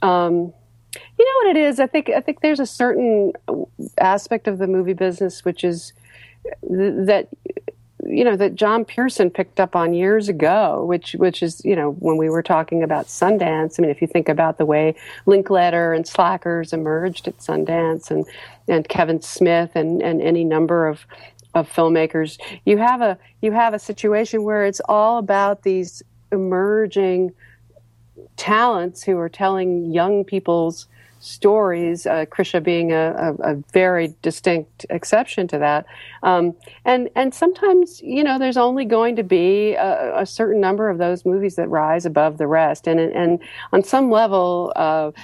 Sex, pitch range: female, 165-210 Hz